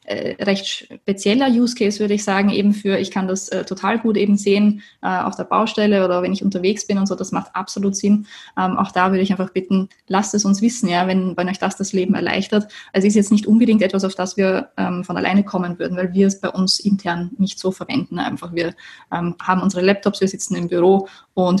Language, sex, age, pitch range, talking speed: German, female, 20-39, 185-205 Hz, 235 wpm